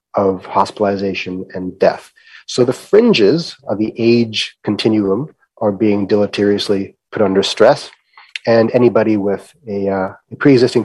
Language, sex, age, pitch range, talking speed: English, male, 30-49, 100-120 Hz, 135 wpm